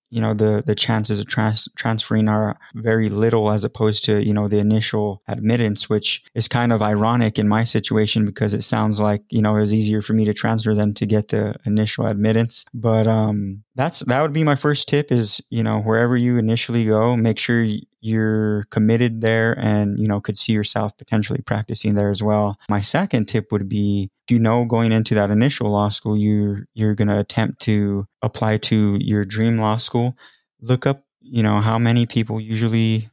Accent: American